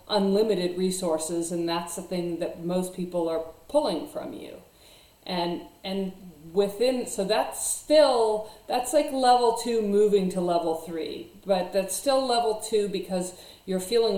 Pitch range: 170-210 Hz